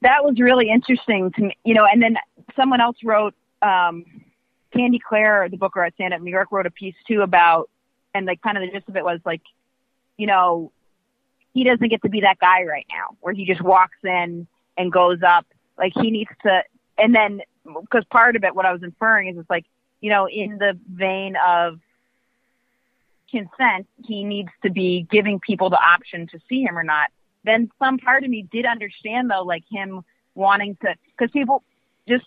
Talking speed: 205 wpm